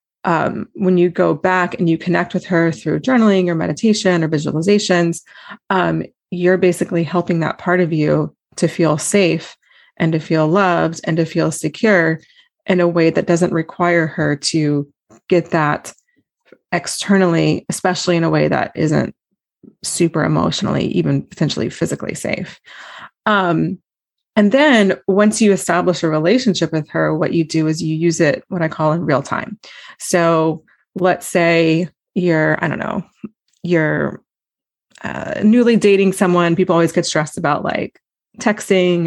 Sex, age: female, 30-49